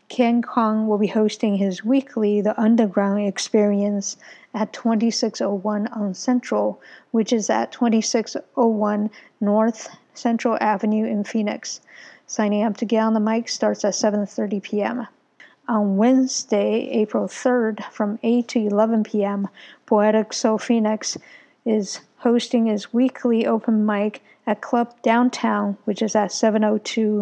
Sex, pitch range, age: female, 210-235 Hz, 50-69